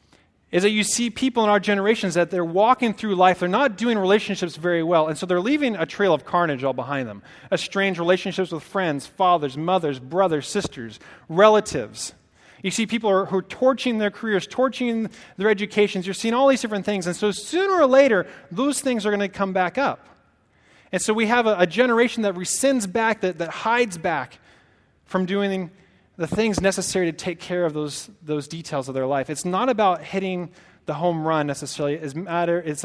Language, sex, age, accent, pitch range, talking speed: English, male, 30-49, American, 165-215 Hz, 205 wpm